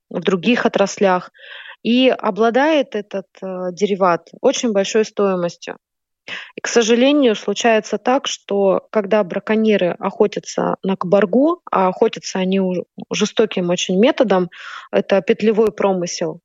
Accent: native